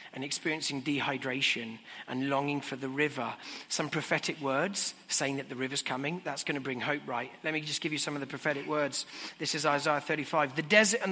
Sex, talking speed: male, 210 wpm